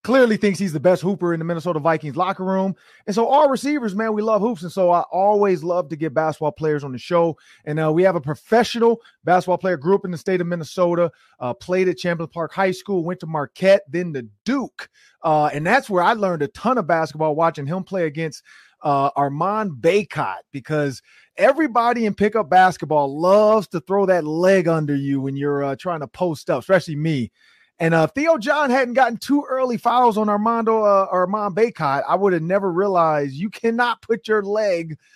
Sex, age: male, 30-49